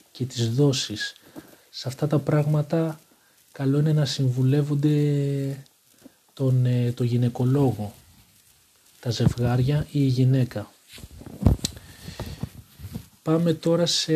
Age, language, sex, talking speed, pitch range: 40-59, Greek, male, 95 wpm, 120-145 Hz